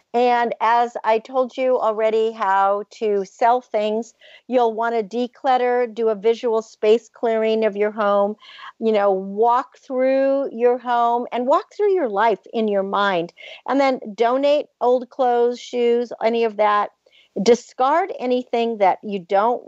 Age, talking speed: 50-69, 150 wpm